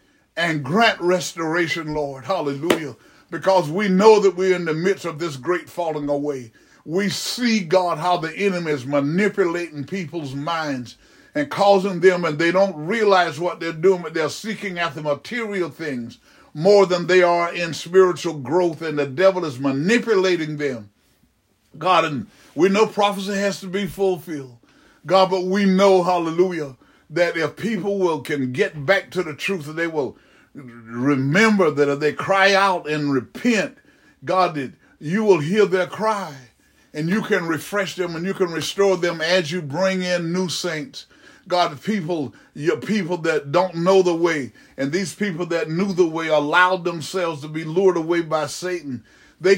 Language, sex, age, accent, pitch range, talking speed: English, male, 60-79, American, 155-190 Hz, 170 wpm